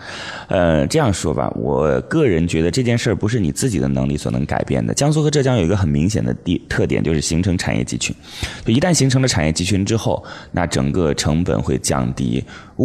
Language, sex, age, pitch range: Chinese, male, 20-39, 75-110 Hz